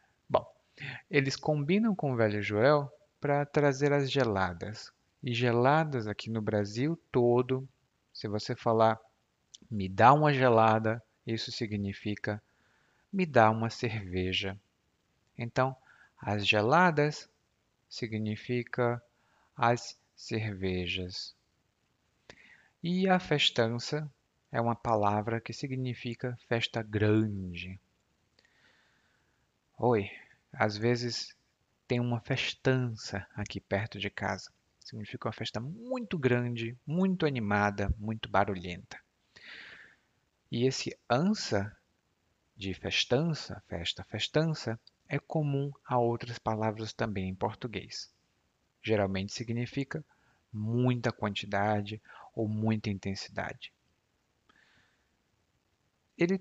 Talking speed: 95 wpm